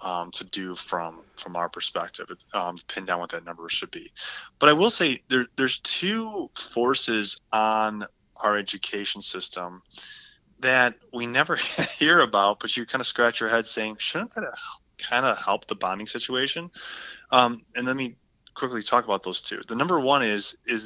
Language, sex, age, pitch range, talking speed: English, male, 20-39, 95-120 Hz, 180 wpm